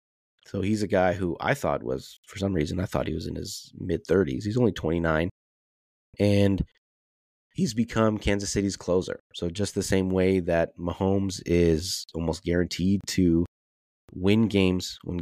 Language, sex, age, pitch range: English, male, 30-49, 80-100 Hz